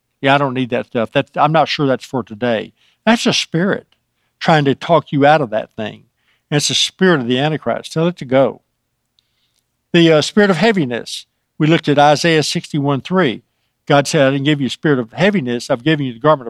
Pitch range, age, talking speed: 130-165 Hz, 60-79, 220 wpm